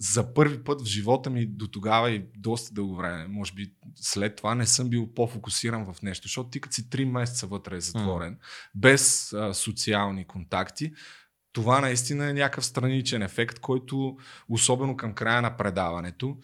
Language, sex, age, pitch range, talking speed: Bulgarian, male, 30-49, 105-140 Hz, 160 wpm